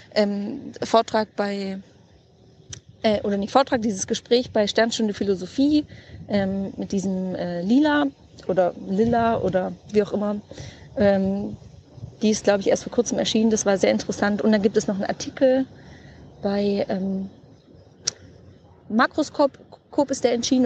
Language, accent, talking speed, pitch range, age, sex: German, German, 140 wpm, 200-240 Hz, 30-49, female